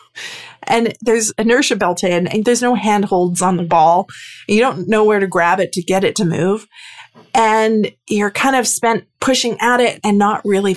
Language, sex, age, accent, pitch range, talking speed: English, female, 30-49, American, 180-220 Hz, 195 wpm